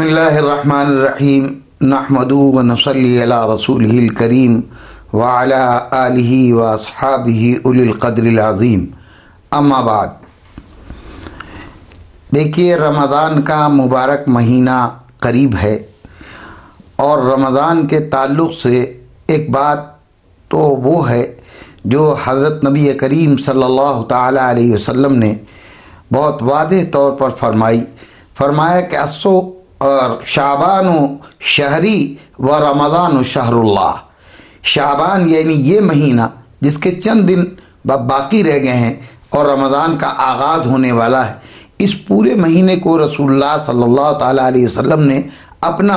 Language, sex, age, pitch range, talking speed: Urdu, male, 60-79, 120-145 Hz, 115 wpm